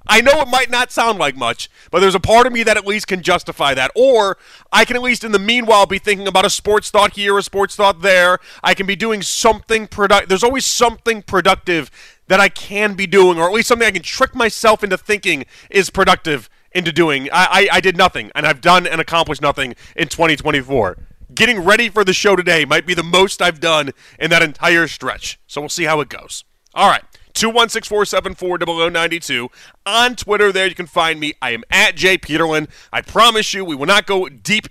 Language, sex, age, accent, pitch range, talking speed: English, male, 30-49, American, 165-205 Hz, 235 wpm